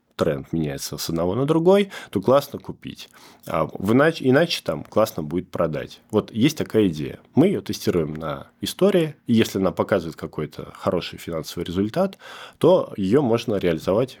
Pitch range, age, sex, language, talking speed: 90-125 Hz, 20-39, male, Russian, 160 wpm